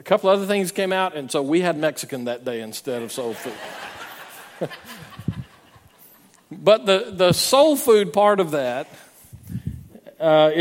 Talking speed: 155 wpm